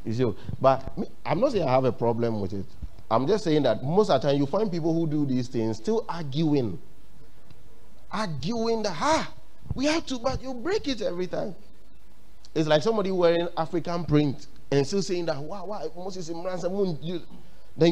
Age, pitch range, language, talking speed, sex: 30-49, 115-170 Hz, English, 185 wpm, male